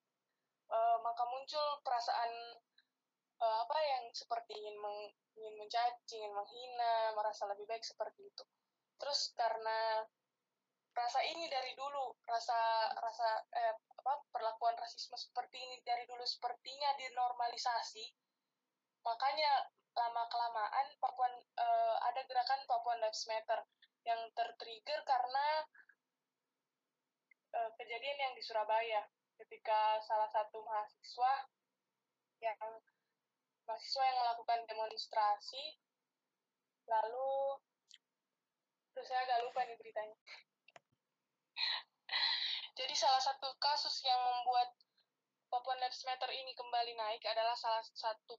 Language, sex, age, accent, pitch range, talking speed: Indonesian, female, 10-29, native, 225-270 Hz, 105 wpm